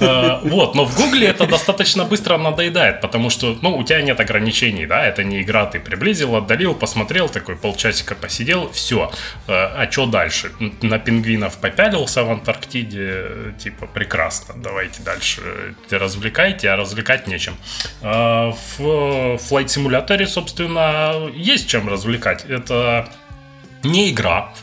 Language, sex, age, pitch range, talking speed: Russian, male, 20-39, 110-140 Hz, 130 wpm